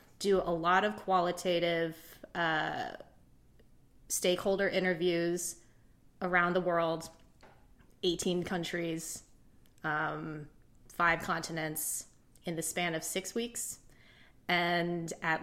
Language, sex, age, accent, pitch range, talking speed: English, female, 30-49, American, 165-190 Hz, 95 wpm